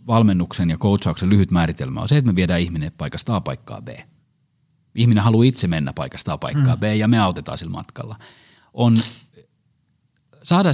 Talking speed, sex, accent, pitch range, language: 170 wpm, male, native, 95-140 Hz, Finnish